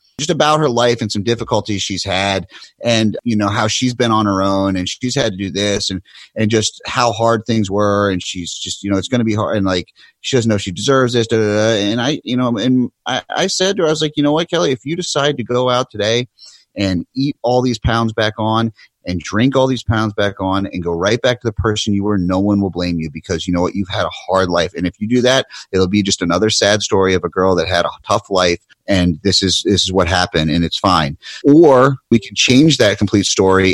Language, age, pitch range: English, 30-49, 95-125 Hz